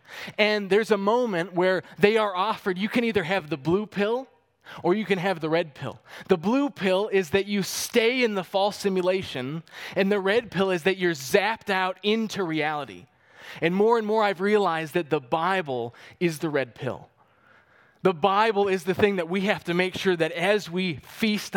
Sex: male